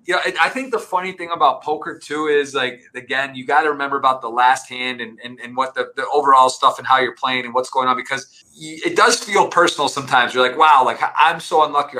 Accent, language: American, English